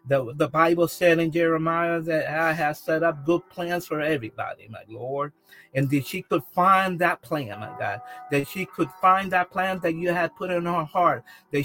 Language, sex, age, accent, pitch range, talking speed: English, male, 50-69, American, 150-185 Hz, 205 wpm